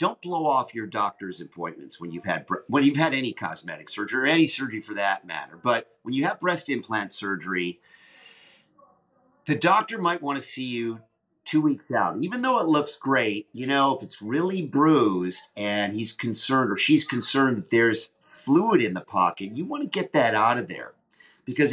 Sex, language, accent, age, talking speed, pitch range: male, English, American, 50-69, 195 wpm, 110-155 Hz